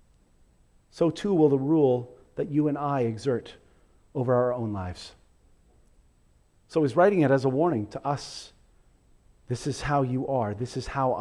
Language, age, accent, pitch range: English, 40-59, American, 115-175 Hz